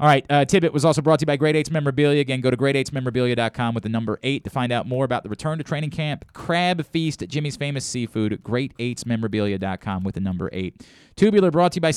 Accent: American